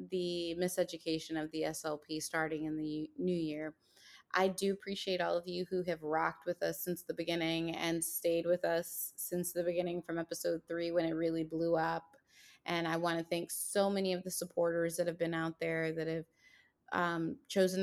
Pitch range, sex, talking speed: 165-180 Hz, female, 190 wpm